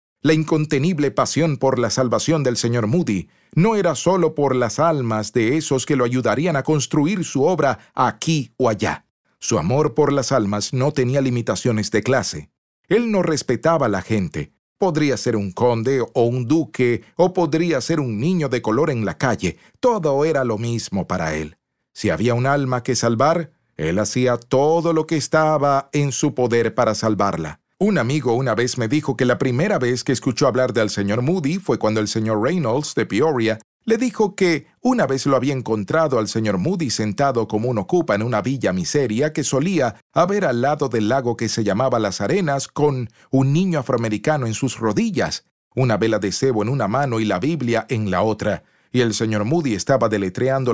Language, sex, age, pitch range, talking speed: Spanish, male, 40-59, 110-155 Hz, 195 wpm